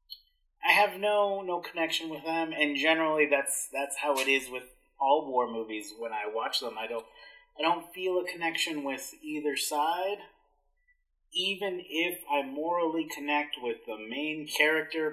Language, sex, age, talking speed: English, male, 30-49, 165 wpm